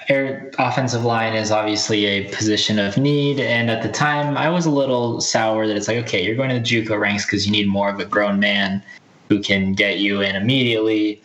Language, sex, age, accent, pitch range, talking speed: English, male, 10-29, American, 100-125 Hz, 220 wpm